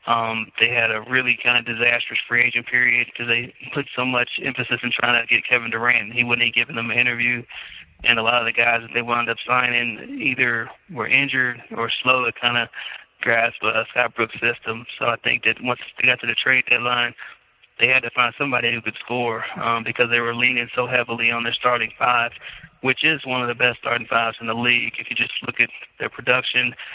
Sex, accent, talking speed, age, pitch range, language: male, American, 225 wpm, 20-39, 115-125 Hz, English